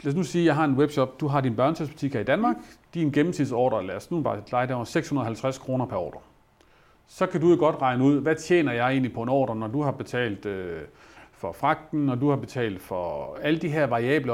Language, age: Danish, 40-59